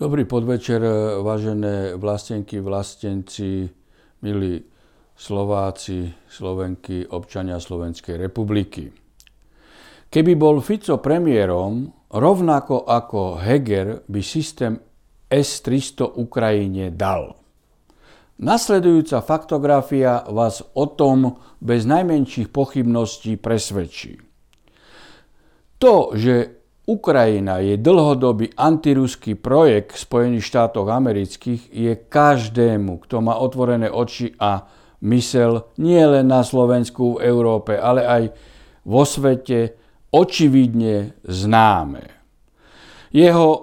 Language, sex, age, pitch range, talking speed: Slovak, male, 60-79, 105-135 Hz, 85 wpm